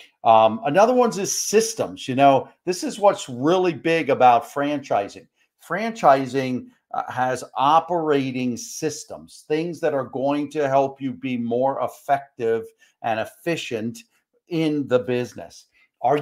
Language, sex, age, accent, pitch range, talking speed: English, male, 50-69, American, 125-165 Hz, 125 wpm